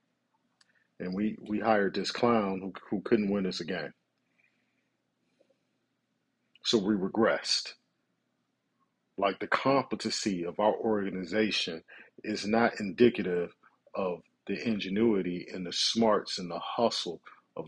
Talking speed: 115 wpm